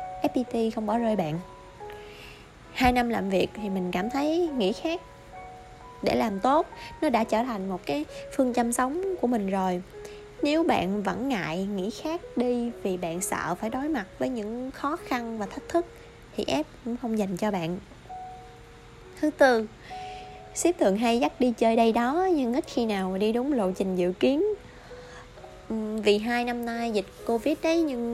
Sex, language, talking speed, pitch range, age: female, Vietnamese, 180 wpm, 195-265 Hz, 20-39